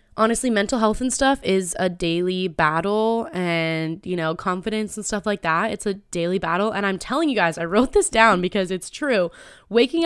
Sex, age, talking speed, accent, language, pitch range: female, 10-29, 205 wpm, American, English, 180-235 Hz